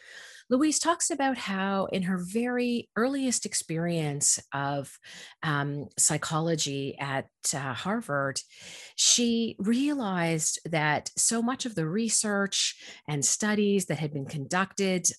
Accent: American